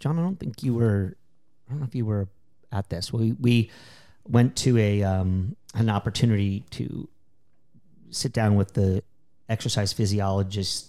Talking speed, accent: 160 wpm, American